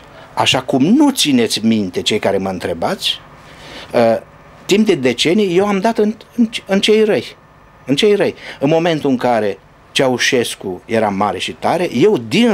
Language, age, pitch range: Romanian, 60-79, 135-225 Hz